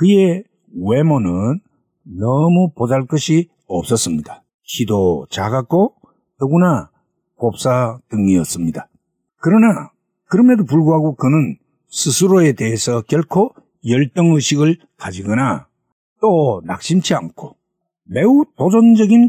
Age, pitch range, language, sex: 60-79, 125-190 Hz, Korean, male